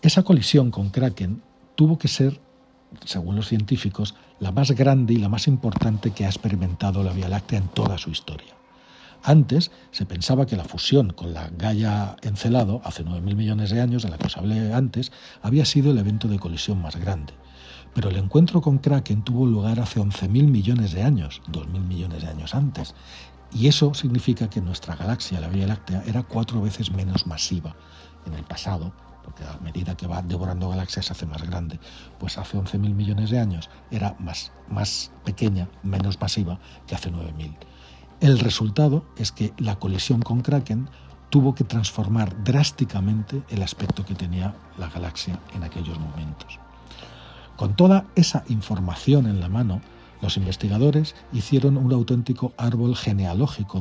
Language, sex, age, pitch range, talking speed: Spanish, male, 60-79, 90-120 Hz, 170 wpm